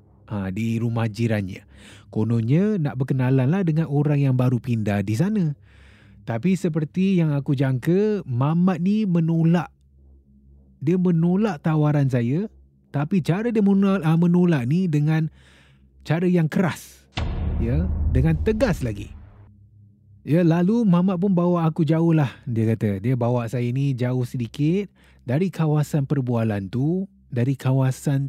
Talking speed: 130 wpm